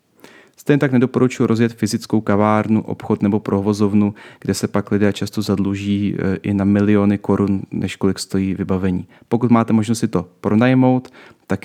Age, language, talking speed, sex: 30-49, Czech, 155 wpm, male